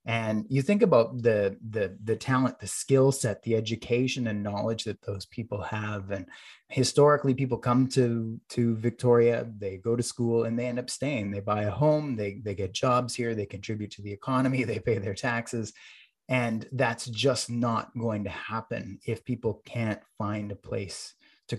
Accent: American